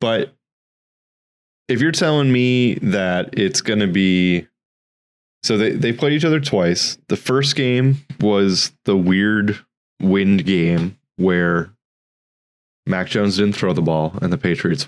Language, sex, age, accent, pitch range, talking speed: English, male, 20-39, American, 85-100 Hz, 140 wpm